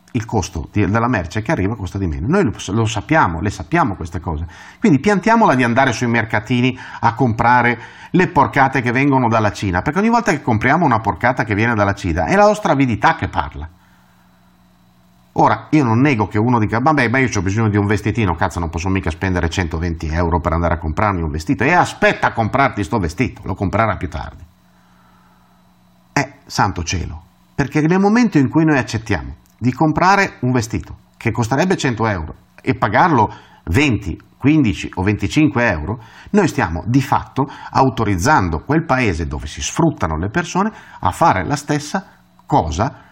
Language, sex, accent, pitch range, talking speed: Italian, male, native, 90-140 Hz, 180 wpm